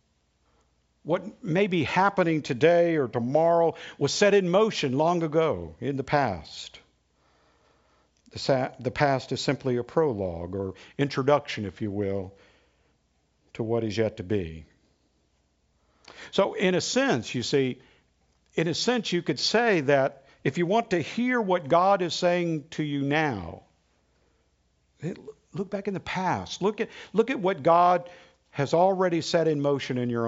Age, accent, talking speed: 50-69, American, 150 wpm